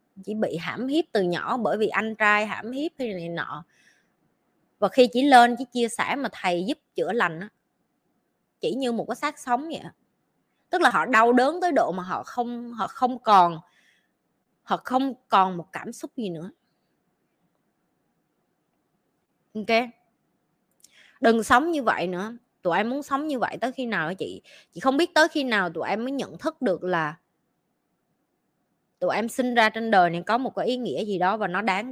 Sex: female